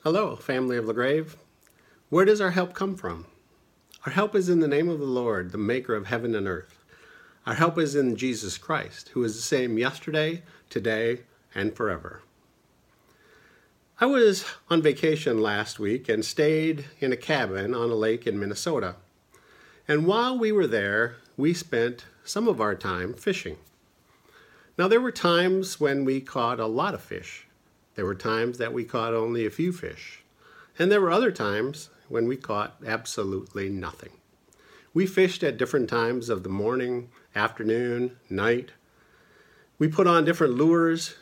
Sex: male